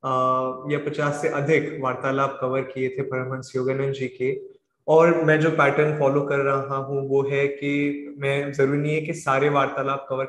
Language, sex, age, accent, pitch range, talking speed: Hindi, male, 20-39, native, 130-150 Hz, 180 wpm